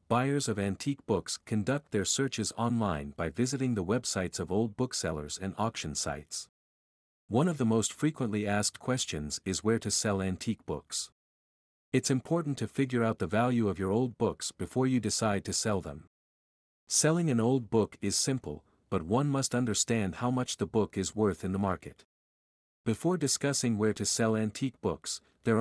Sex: male